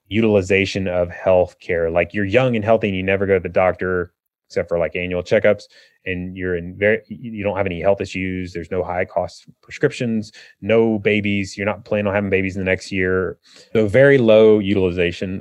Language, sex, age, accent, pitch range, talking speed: English, male, 30-49, American, 95-115 Hz, 205 wpm